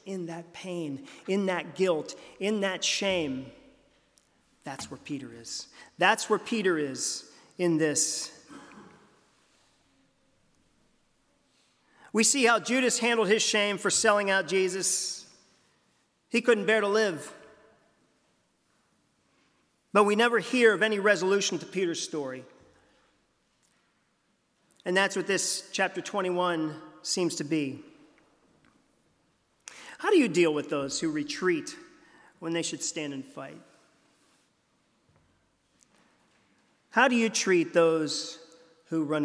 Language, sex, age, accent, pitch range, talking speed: English, male, 40-59, American, 150-210 Hz, 115 wpm